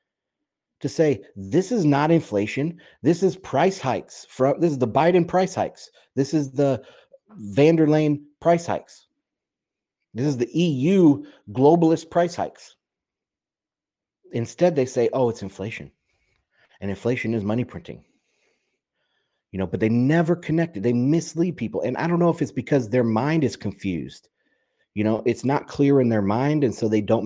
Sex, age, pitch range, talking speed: male, 30-49, 105-155 Hz, 160 wpm